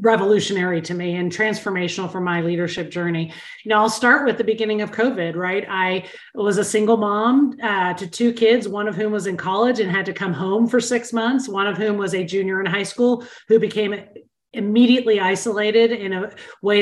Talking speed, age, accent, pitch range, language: 205 wpm, 30-49, American, 185-225 Hz, English